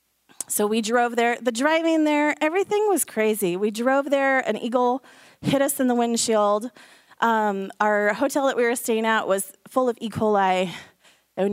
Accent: American